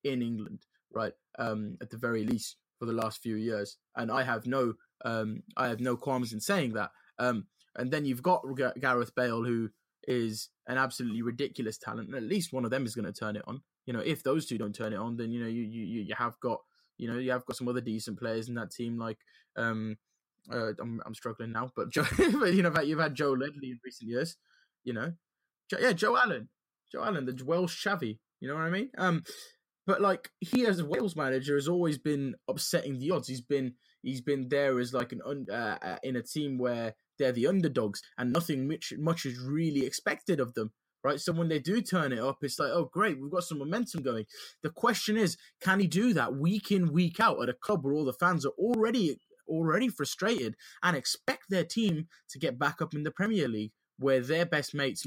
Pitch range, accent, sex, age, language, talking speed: 115-165 Hz, British, male, 20-39, English, 230 wpm